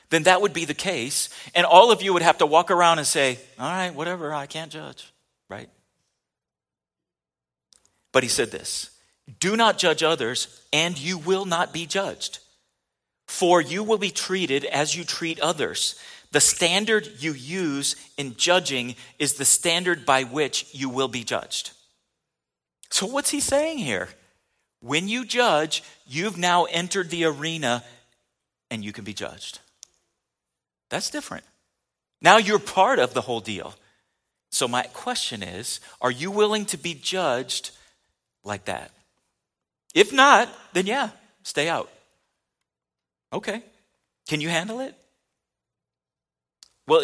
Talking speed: 145 wpm